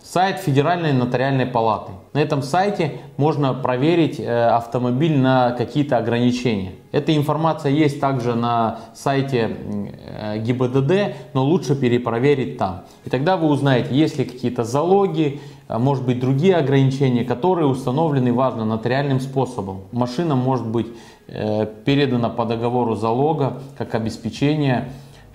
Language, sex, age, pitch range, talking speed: Russian, male, 20-39, 115-145 Hz, 120 wpm